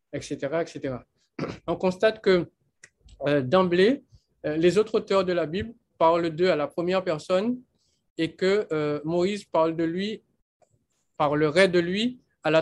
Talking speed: 145 wpm